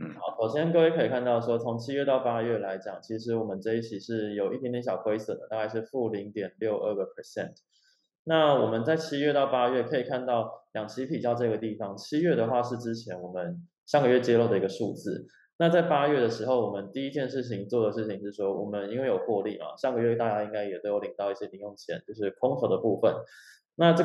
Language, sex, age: Chinese, male, 20-39